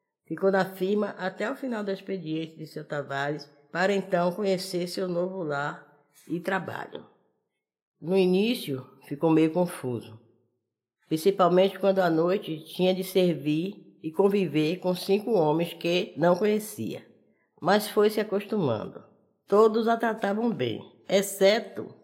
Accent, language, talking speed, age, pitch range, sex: Brazilian, Portuguese, 130 wpm, 10-29, 160-200 Hz, female